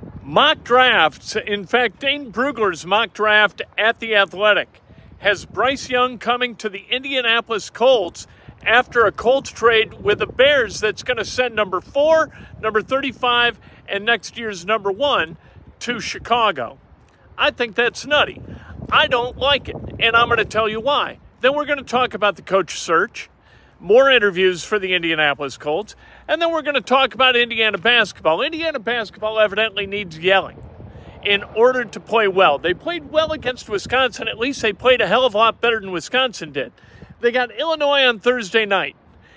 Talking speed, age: 175 wpm, 50-69